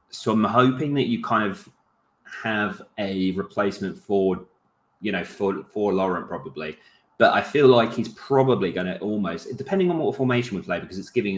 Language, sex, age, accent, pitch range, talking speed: English, male, 20-39, British, 90-110 Hz, 185 wpm